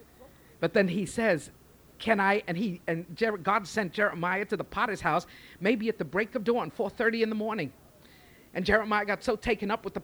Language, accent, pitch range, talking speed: English, American, 195-275 Hz, 205 wpm